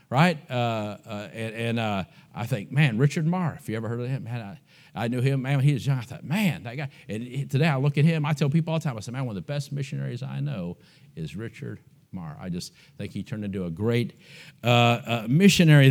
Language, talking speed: English, 255 wpm